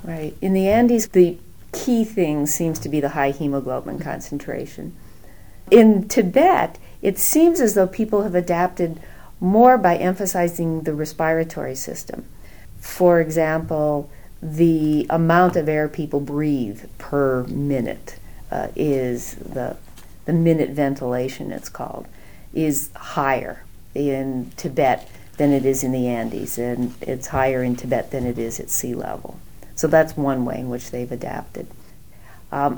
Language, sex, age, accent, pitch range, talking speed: English, female, 50-69, American, 135-165 Hz, 140 wpm